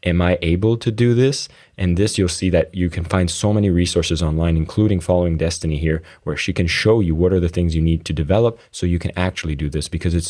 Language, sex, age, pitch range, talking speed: English, male, 20-39, 85-100 Hz, 250 wpm